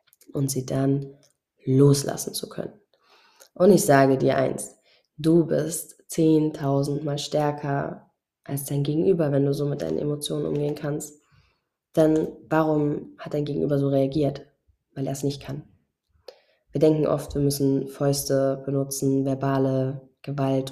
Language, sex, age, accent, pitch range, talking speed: German, female, 20-39, German, 135-150 Hz, 140 wpm